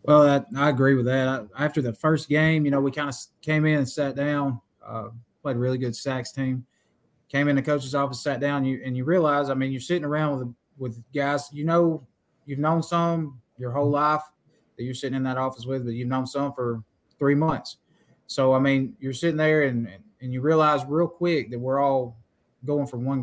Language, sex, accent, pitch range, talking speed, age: English, male, American, 120-145 Hz, 225 wpm, 20-39